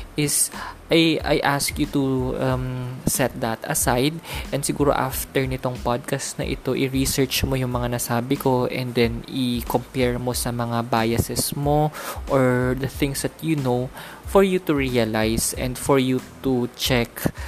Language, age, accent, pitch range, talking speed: Filipino, 20-39, native, 125-150 Hz, 160 wpm